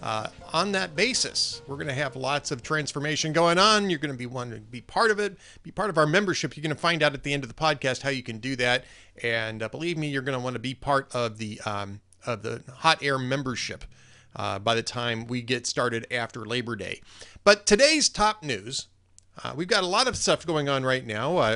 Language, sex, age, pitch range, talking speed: English, male, 40-59, 125-170 Hz, 240 wpm